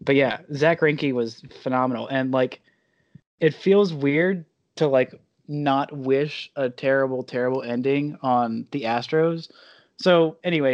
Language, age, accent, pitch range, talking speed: English, 20-39, American, 120-150 Hz, 135 wpm